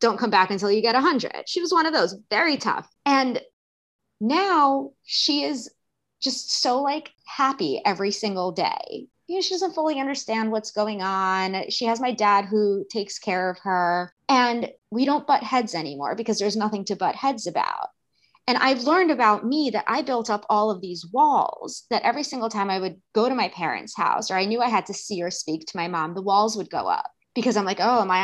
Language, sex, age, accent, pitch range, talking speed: English, female, 20-39, American, 195-255 Hz, 220 wpm